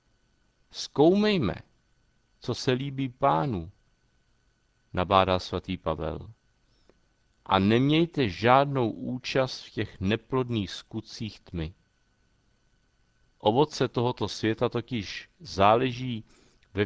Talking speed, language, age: 80 wpm, Czech, 50-69